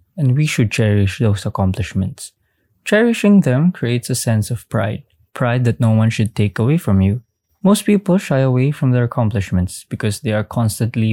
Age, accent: 20-39, Filipino